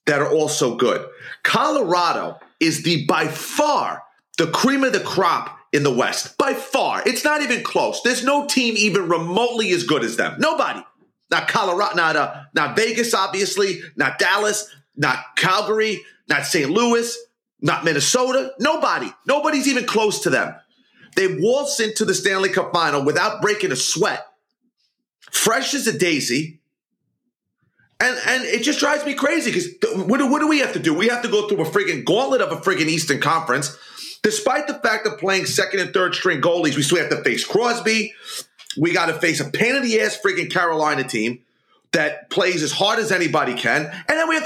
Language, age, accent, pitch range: English, 30-49, American, 175-270 Hz